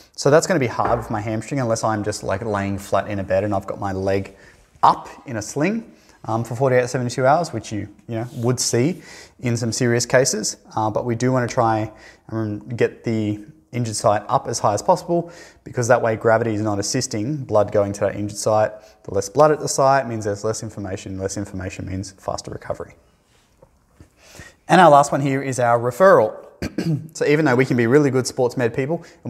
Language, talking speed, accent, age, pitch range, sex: English, 215 wpm, Australian, 20-39, 105-135 Hz, male